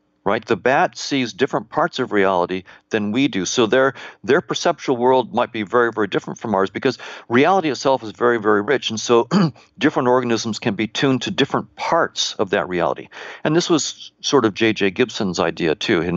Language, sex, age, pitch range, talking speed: English, male, 60-79, 95-125 Hz, 200 wpm